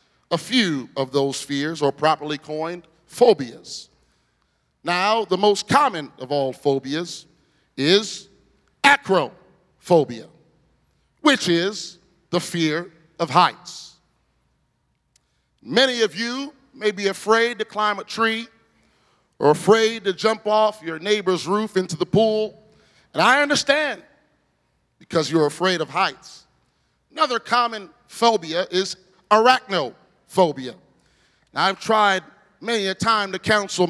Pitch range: 160-215 Hz